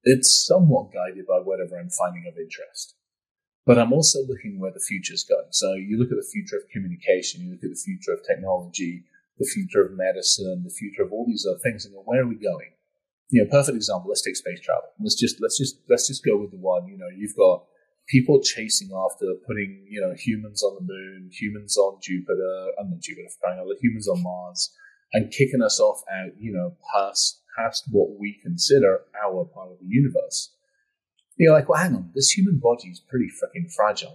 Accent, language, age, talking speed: British, English, 30-49, 220 wpm